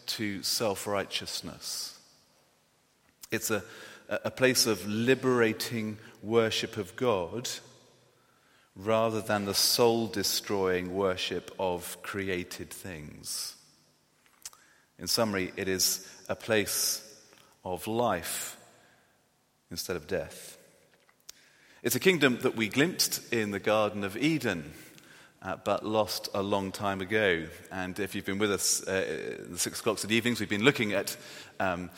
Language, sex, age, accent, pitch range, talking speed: English, male, 40-59, British, 95-110 Hz, 130 wpm